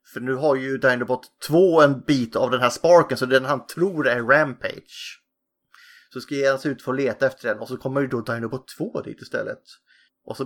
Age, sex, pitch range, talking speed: 30-49, male, 120-160 Hz, 225 wpm